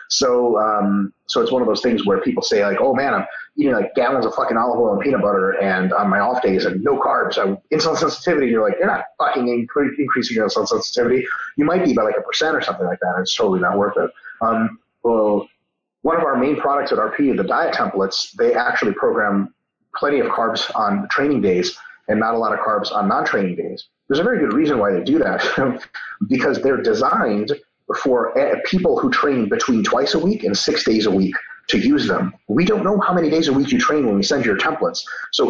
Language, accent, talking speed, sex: English, American, 230 wpm, male